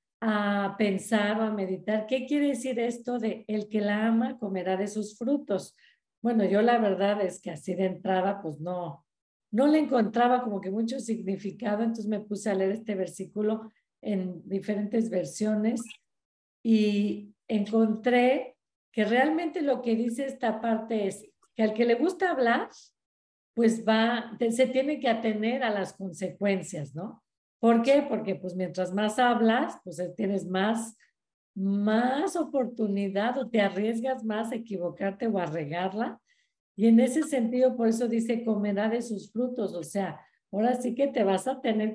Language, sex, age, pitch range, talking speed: Spanish, female, 50-69, 195-235 Hz, 160 wpm